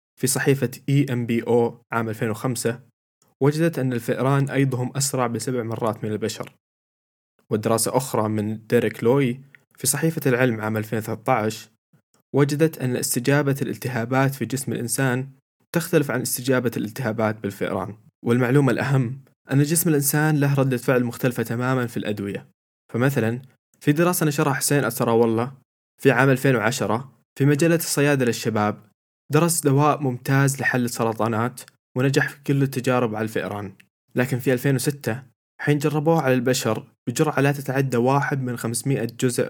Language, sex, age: Arabic, male, 20-39